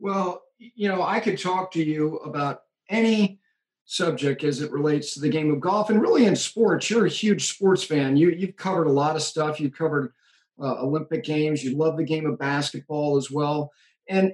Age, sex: 50-69, male